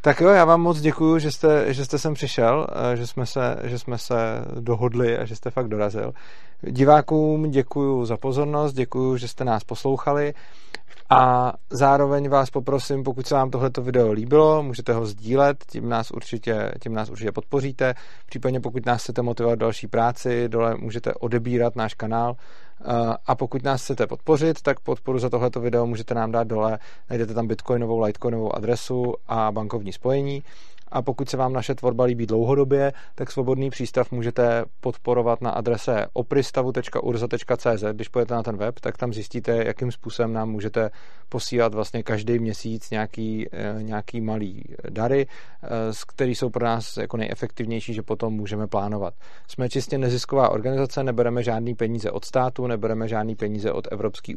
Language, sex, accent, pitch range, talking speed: Czech, male, native, 110-130 Hz, 160 wpm